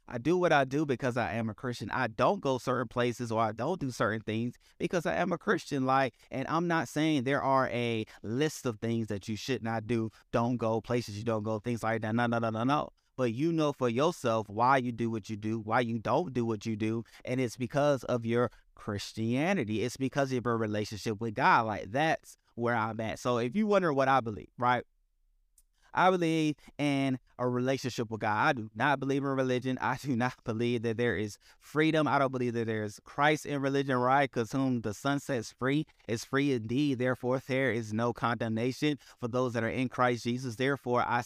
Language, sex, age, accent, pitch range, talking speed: English, male, 30-49, American, 115-135 Hz, 225 wpm